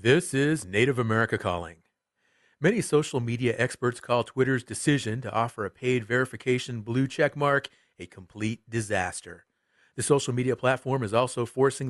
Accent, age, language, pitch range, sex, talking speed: American, 40-59, English, 110-140 Hz, male, 150 wpm